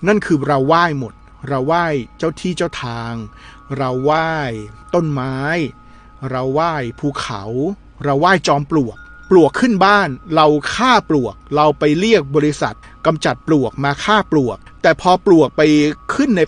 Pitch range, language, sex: 125-165 Hz, Thai, male